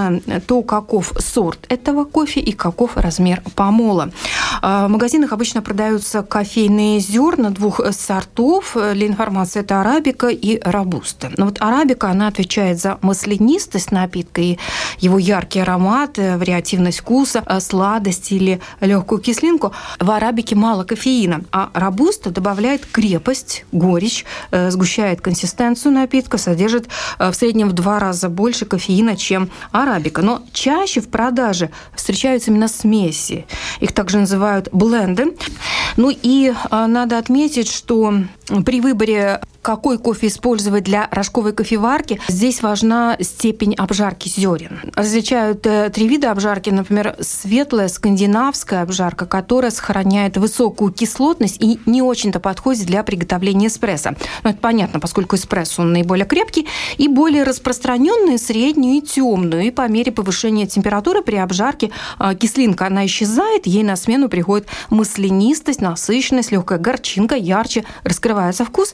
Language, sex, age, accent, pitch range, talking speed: Russian, female, 30-49, native, 195-245 Hz, 130 wpm